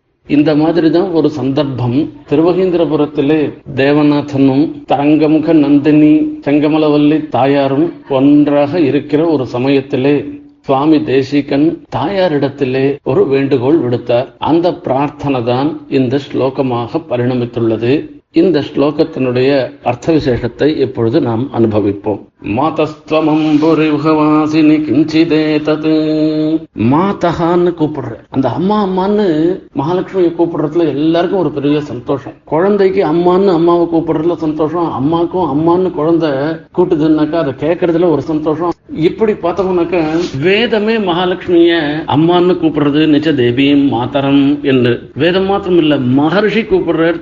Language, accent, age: Tamil, native, 50-69